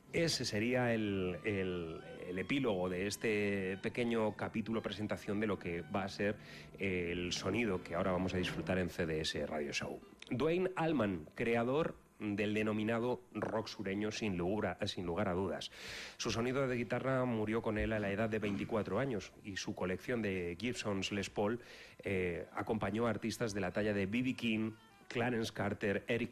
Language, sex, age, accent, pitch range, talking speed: Spanish, male, 30-49, Spanish, 90-115 Hz, 170 wpm